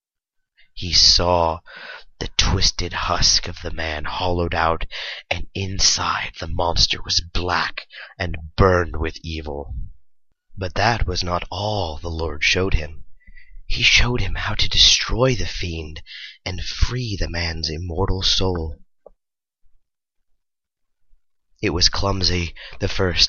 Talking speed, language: 125 wpm, English